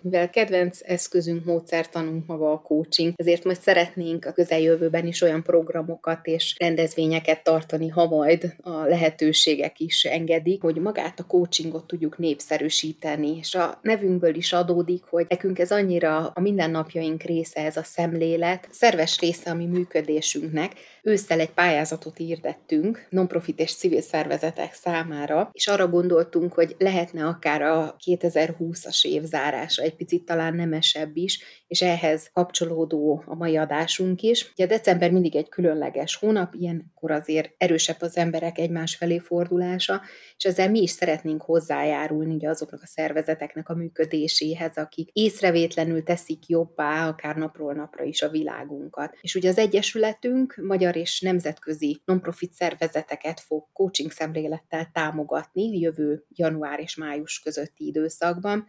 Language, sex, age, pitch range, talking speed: Hungarian, female, 30-49, 155-175 Hz, 140 wpm